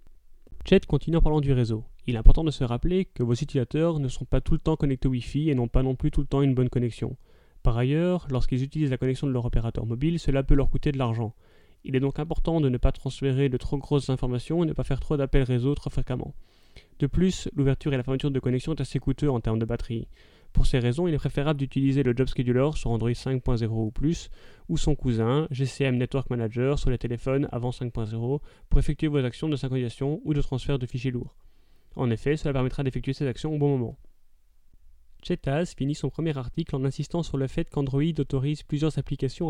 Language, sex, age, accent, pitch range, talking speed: French, male, 30-49, French, 130-150 Hz, 225 wpm